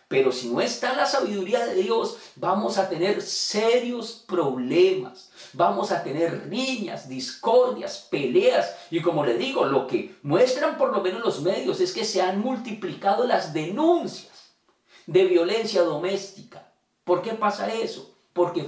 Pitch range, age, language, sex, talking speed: 170-210 Hz, 40-59, Spanish, male, 150 wpm